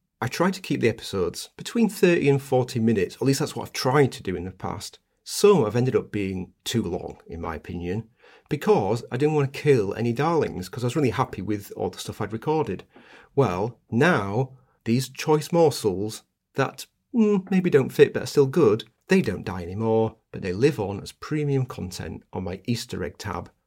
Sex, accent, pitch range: male, British, 105-140 Hz